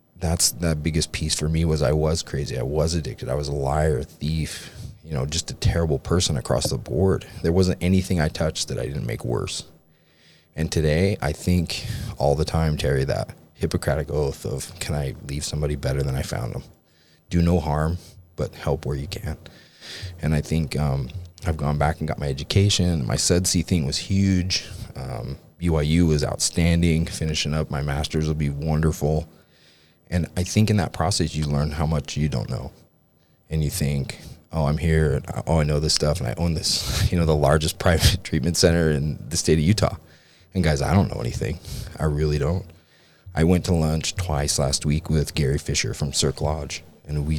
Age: 30-49